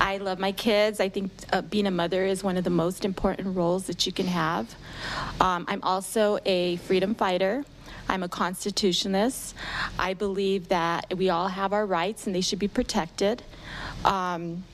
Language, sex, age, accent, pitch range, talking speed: English, female, 30-49, American, 180-210 Hz, 180 wpm